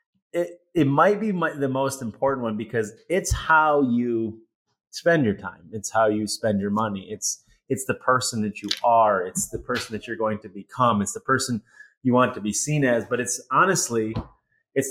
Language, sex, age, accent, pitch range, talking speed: English, male, 30-49, American, 110-140 Hz, 200 wpm